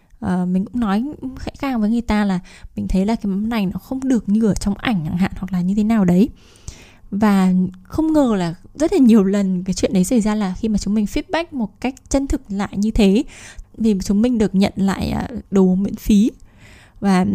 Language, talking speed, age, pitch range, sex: Vietnamese, 230 wpm, 10-29, 190-245 Hz, female